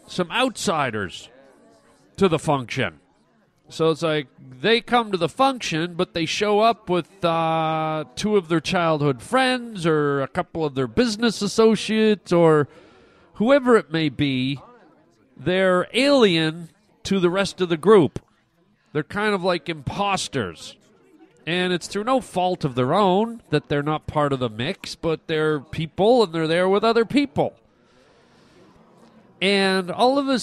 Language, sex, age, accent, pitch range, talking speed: English, male, 40-59, American, 150-210 Hz, 150 wpm